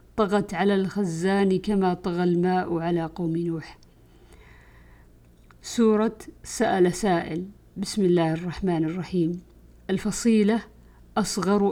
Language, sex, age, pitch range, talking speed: Arabic, female, 50-69, 165-195 Hz, 90 wpm